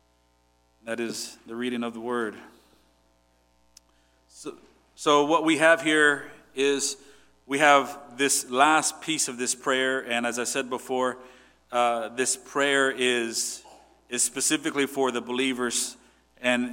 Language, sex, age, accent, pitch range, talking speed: English, male, 40-59, American, 120-145 Hz, 135 wpm